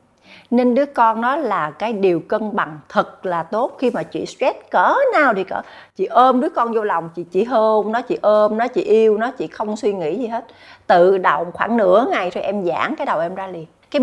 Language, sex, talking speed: Vietnamese, female, 240 wpm